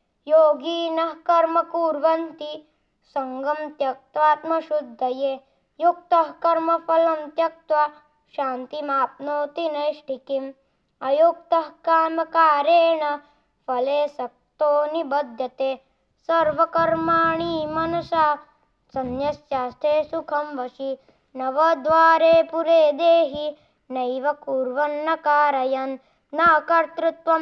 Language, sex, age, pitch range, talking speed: Hindi, female, 20-39, 275-330 Hz, 65 wpm